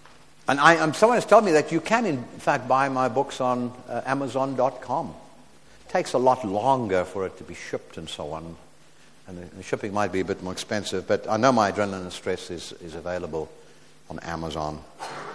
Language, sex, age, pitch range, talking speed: English, male, 60-79, 110-150 Hz, 205 wpm